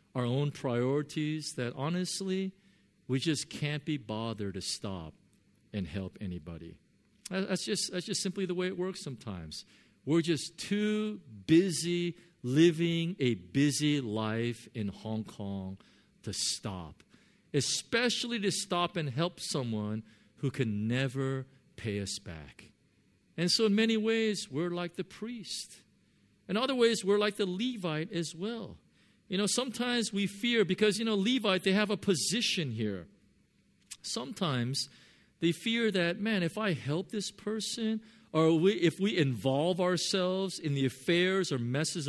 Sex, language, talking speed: male, English, 145 wpm